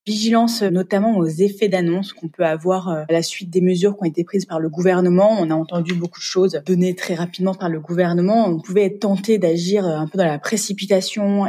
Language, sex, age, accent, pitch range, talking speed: French, female, 20-39, French, 165-195 Hz, 220 wpm